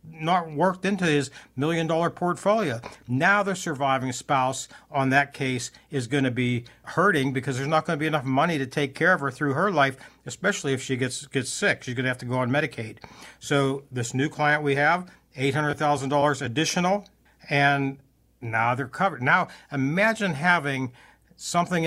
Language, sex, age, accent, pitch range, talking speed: English, male, 60-79, American, 130-160 Hz, 180 wpm